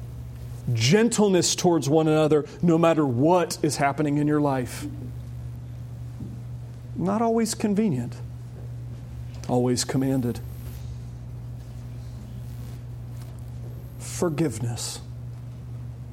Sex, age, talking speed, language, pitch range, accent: male, 40-59, 65 wpm, English, 120-160 Hz, American